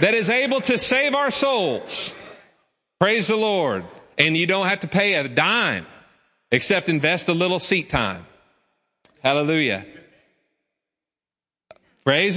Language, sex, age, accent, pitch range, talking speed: English, male, 40-59, American, 170-230 Hz, 125 wpm